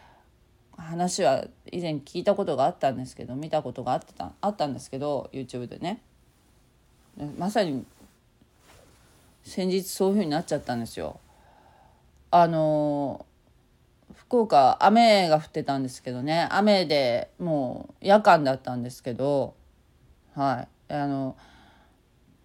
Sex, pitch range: female, 135-210 Hz